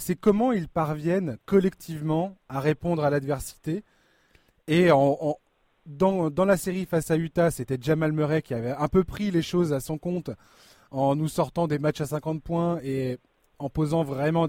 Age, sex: 20-39, male